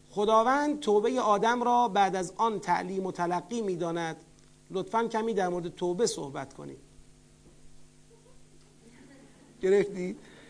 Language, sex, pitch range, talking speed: Persian, male, 155-210 Hz, 115 wpm